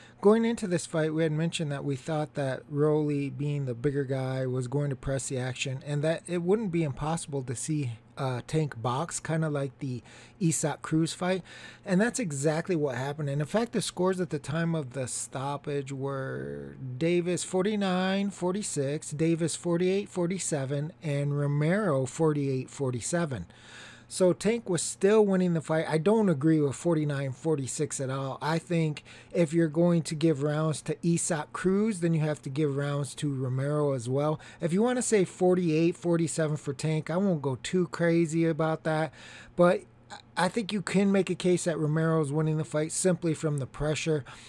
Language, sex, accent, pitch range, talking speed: English, male, American, 140-170 Hz, 180 wpm